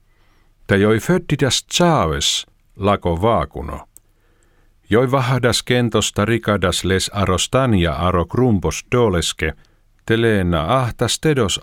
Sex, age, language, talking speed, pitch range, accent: male, 50-69, Finnish, 95 wpm, 95-125 Hz, native